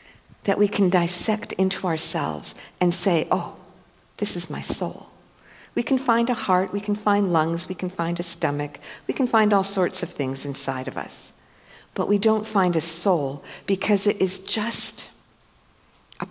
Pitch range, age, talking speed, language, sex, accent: 140-190 Hz, 50-69, 175 wpm, English, female, American